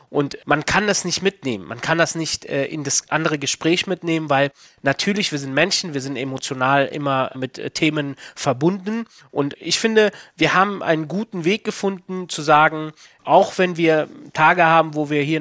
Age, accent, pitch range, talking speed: 30-49, German, 140-175 Hz, 185 wpm